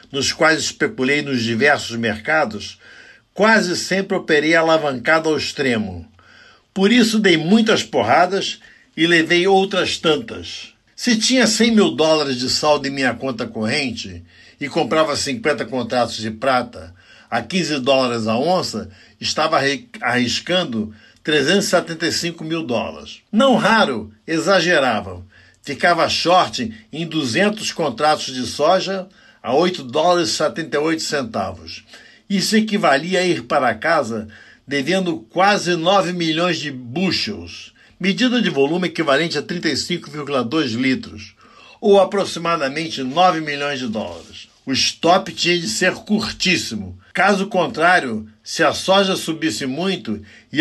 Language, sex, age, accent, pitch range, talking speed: Portuguese, male, 60-79, Brazilian, 125-180 Hz, 120 wpm